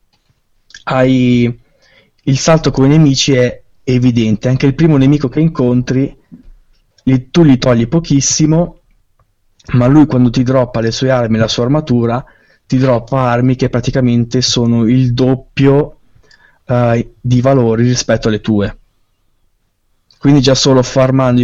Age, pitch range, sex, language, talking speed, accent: 20-39, 115-130 Hz, male, Italian, 135 wpm, native